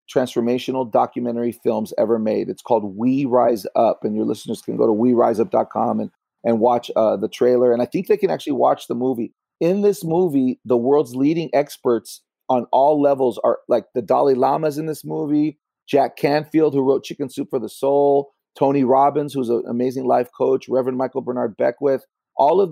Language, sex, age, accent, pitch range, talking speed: English, male, 40-59, American, 120-140 Hz, 190 wpm